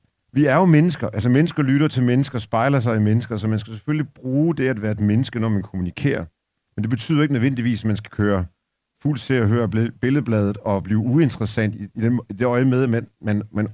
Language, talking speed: Danish, 215 wpm